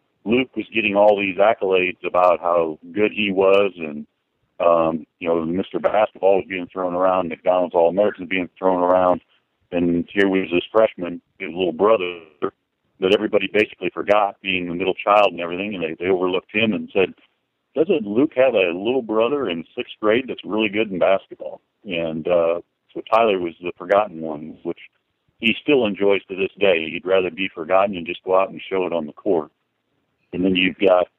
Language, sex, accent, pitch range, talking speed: English, male, American, 85-100 Hz, 190 wpm